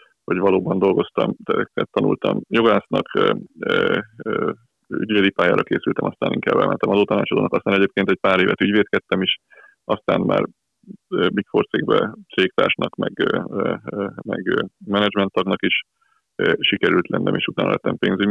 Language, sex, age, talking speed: Hungarian, male, 30-49, 115 wpm